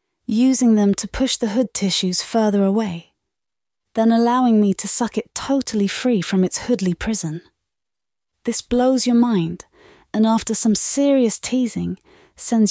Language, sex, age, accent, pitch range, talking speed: English, female, 30-49, British, 195-235 Hz, 145 wpm